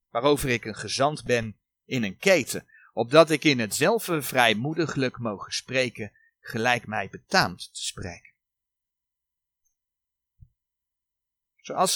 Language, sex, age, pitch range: Dutch, male, 40-59, 140-195 Hz